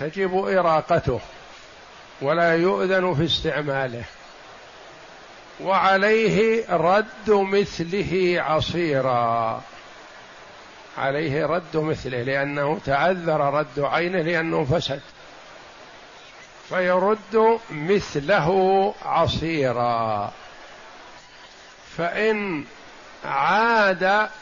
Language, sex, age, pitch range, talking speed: Arabic, male, 50-69, 150-190 Hz, 60 wpm